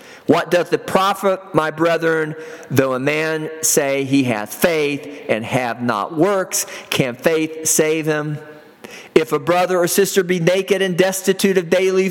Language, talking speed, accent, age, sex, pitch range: English, 160 wpm, American, 50-69, male, 145-195 Hz